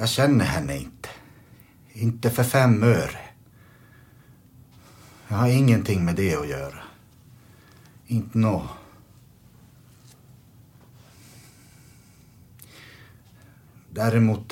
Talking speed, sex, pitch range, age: 75 wpm, male, 95-125 Hz, 60-79